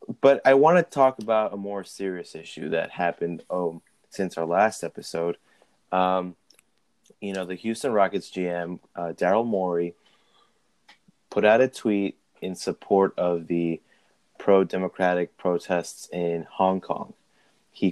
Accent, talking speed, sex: American, 135 wpm, male